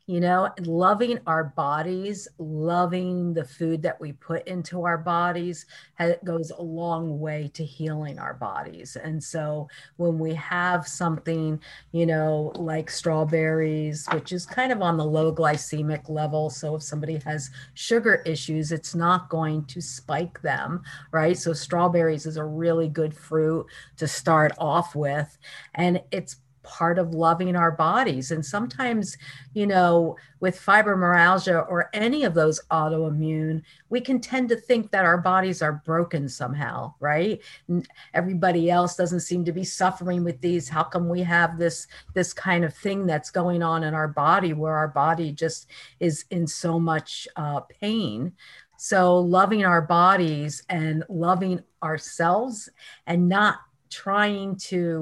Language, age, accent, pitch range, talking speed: English, 50-69, American, 155-180 Hz, 155 wpm